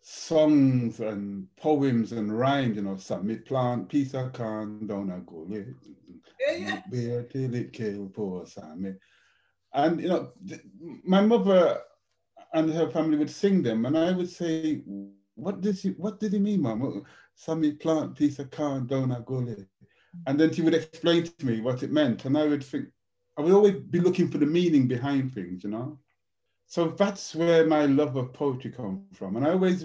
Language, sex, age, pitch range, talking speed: English, male, 60-79, 120-170 Hz, 160 wpm